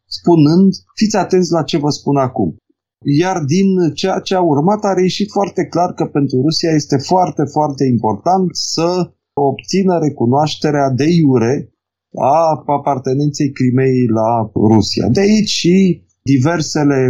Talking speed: 135 wpm